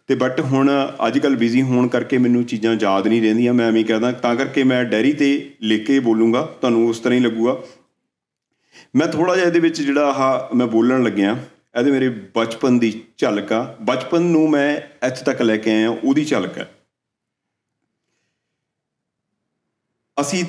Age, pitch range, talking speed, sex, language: 40-59, 110-140 Hz, 165 wpm, male, Punjabi